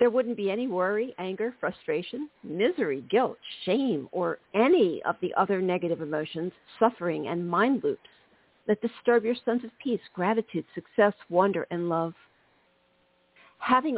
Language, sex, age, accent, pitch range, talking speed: English, female, 50-69, American, 175-230 Hz, 140 wpm